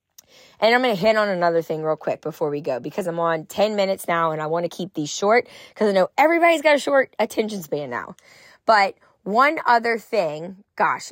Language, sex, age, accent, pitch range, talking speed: English, female, 20-39, American, 185-230 Hz, 220 wpm